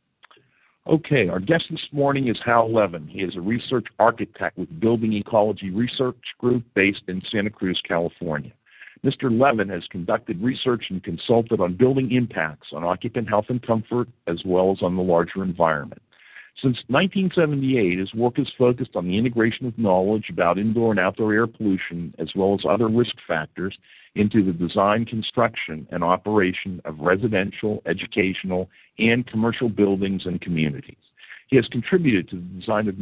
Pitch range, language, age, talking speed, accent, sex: 90-120 Hz, English, 50-69, 160 wpm, American, male